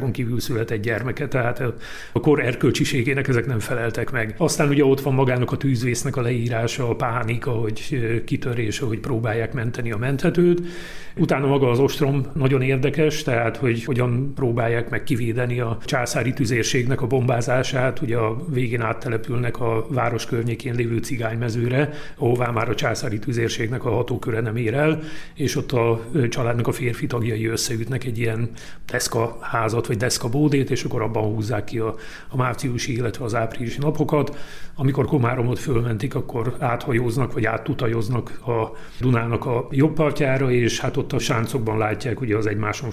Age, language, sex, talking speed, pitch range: 40-59, Hungarian, male, 155 wpm, 115-140 Hz